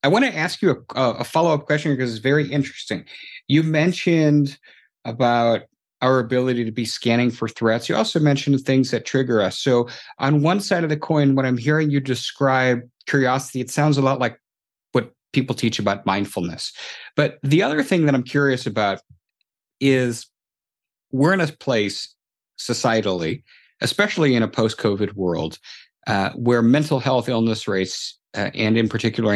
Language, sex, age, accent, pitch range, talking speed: English, male, 50-69, American, 115-140 Hz, 170 wpm